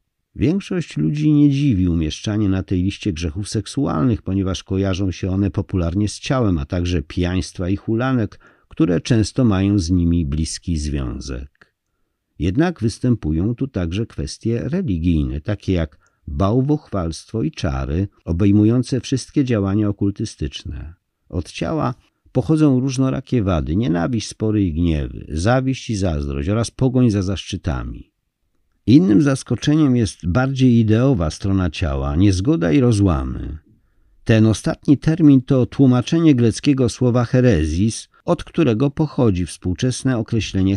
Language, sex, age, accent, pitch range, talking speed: Polish, male, 50-69, native, 80-120 Hz, 120 wpm